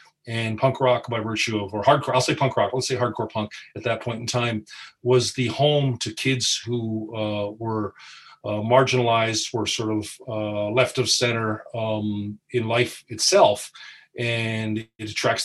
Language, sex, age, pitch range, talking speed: English, male, 40-59, 110-135 Hz, 175 wpm